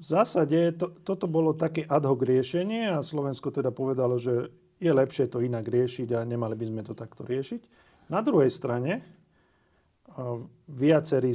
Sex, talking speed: male, 160 wpm